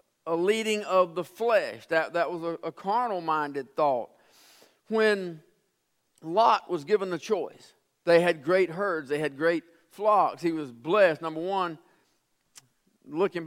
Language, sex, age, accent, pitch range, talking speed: English, male, 50-69, American, 175-245 Hz, 145 wpm